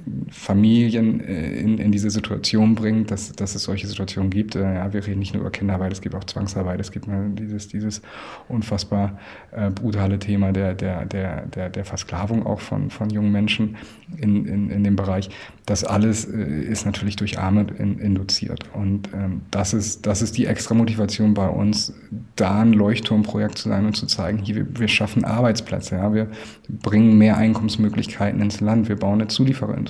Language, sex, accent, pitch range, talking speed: German, male, German, 100-110 Hz, 170 wpm